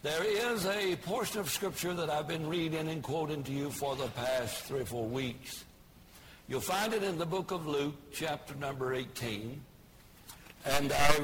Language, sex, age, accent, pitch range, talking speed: English, male, 60-79, American, 140-180 Hz, 180 wpm